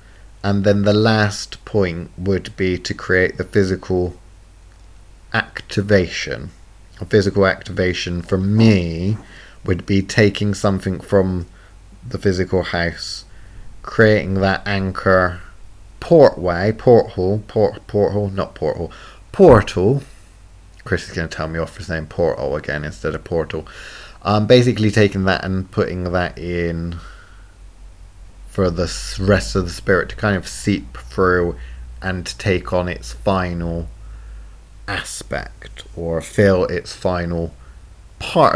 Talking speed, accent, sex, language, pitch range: 120 wpm, British, male, English, 90-100 Hz